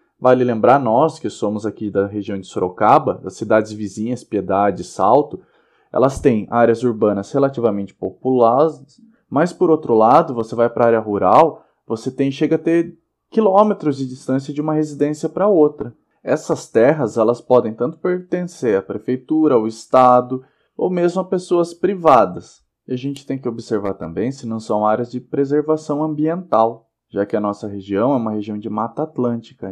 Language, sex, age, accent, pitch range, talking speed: Portuguese, male, 20-39, Brazilian, 110-155 Hz, 170 wpm